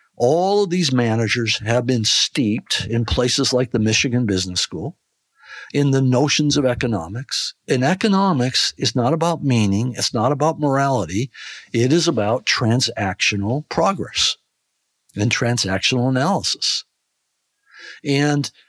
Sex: male